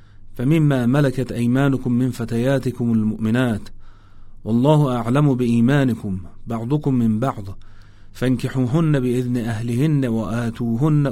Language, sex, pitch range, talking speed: Persian, male, 110-130 Hz, 85 wpm